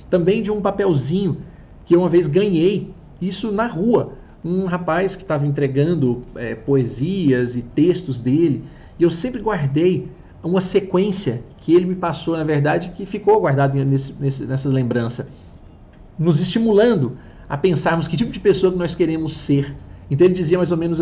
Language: Portuguese